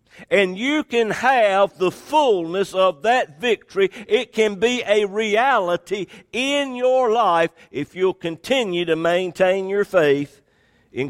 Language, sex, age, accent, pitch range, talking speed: English, male, 60-79, American, 165-235 Hz, 135 wpm